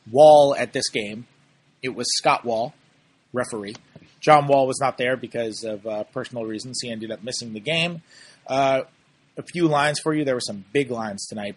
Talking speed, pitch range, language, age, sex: 190 wpm, 120-150 Hz, English, 30-49, male